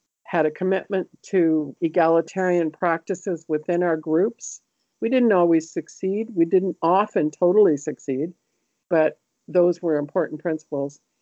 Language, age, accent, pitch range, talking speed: English, 50-69, American, 160-190 Hz, 125 wpm